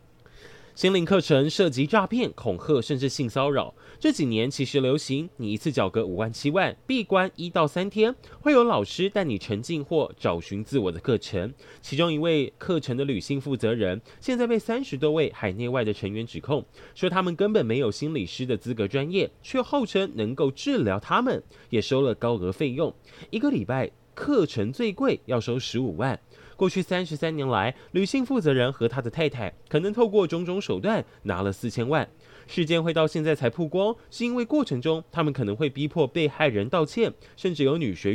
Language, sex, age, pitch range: Chinese, male, 20-39, 115-185 Hz